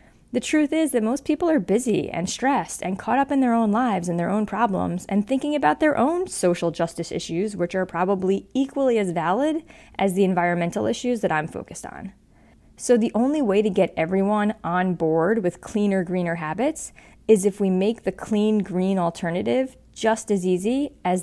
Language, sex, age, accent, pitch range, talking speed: English, female, 20-39, American, 180-235 Hz, 190 wpm